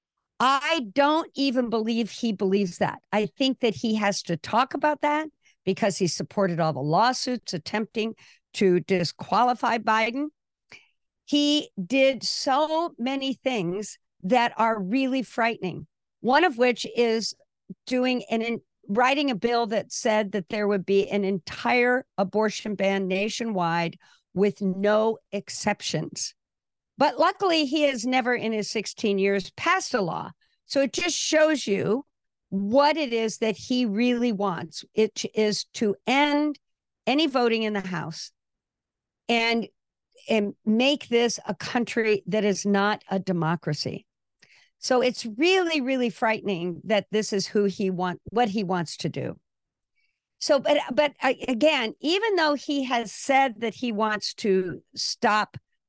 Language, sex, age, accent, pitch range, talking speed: English, female, 50-69, American, 200-265 Hz, 145 wpm